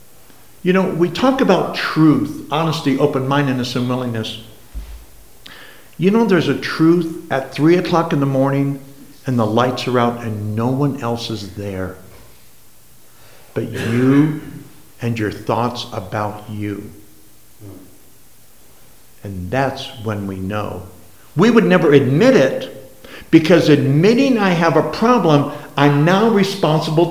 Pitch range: 115-155 Hz